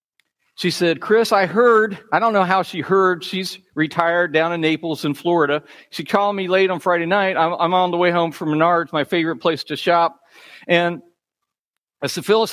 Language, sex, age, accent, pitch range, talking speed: English, male, 50-69, American, 150-200 Hz, 200 wpm